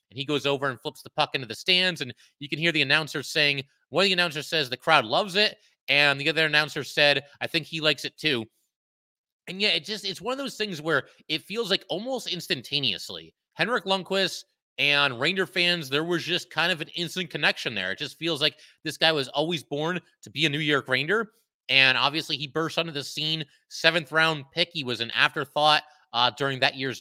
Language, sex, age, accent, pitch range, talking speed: English, male, 30-49, American, 135-165 Hz, 220 wpm